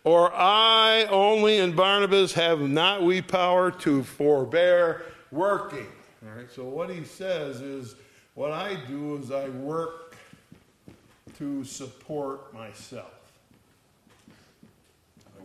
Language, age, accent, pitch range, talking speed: English, 60-79, American, 130-170 Hz, 115 wpm